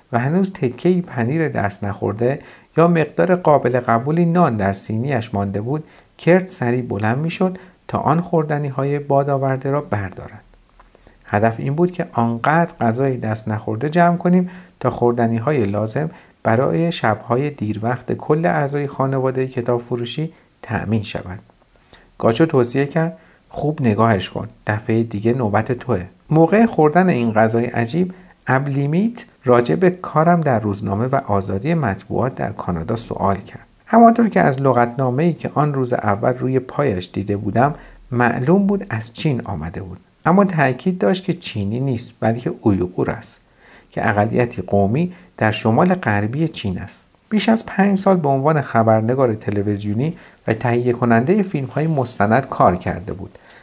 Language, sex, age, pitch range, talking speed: Persian, male, 50-69, 110-160 Hz, 150 wpm